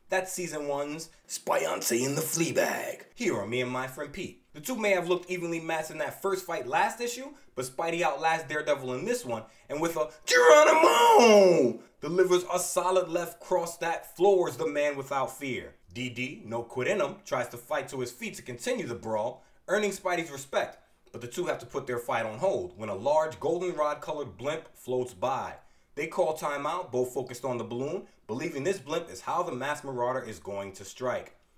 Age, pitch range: 20-39, 125-175 Hz